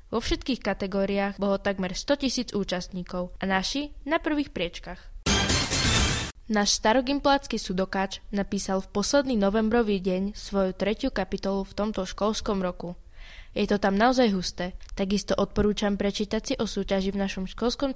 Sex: female